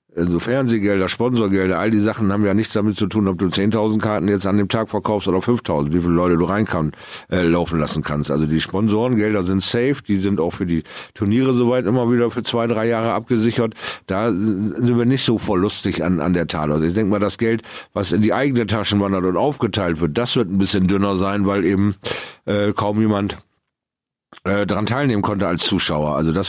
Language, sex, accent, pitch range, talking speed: German, male, German, 90-110 Hz, 215 wpm